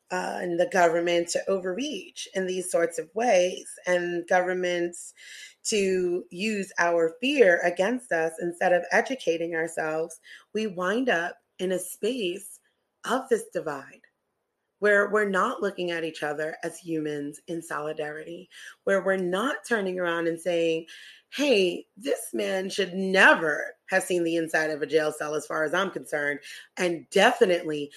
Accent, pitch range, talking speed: American, 160-200 Hz, 150 wpm